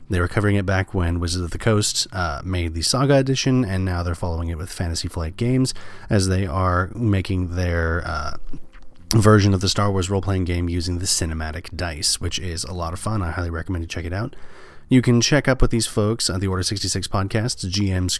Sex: male